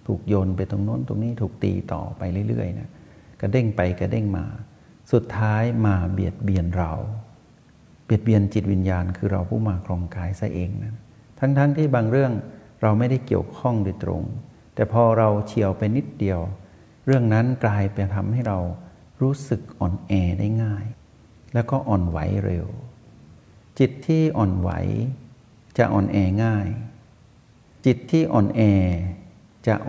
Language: Thai